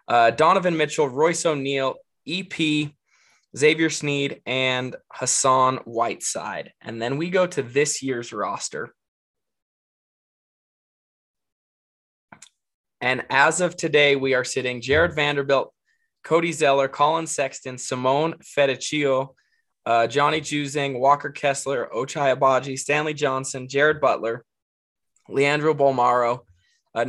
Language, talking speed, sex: English, 105 wpm, male